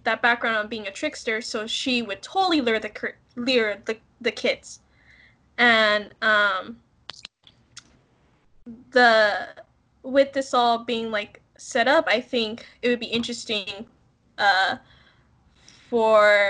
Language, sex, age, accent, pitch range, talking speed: English, female, 10-29, American, 215-280 Hz, 125 wpm